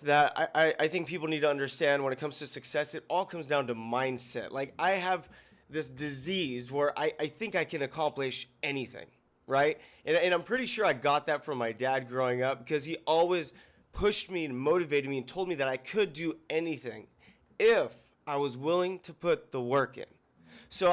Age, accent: 20-39, American